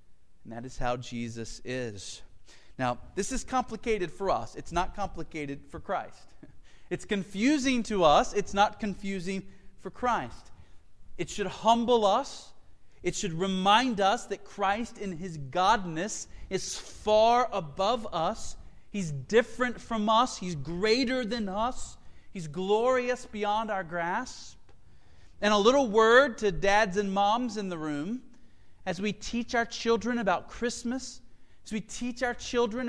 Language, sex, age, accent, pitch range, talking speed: English, male, 40-59, American, 140-230 Hz, 145 wpm